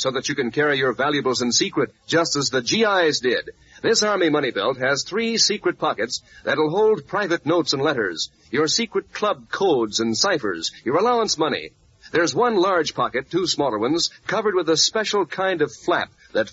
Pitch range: 150-215 Hz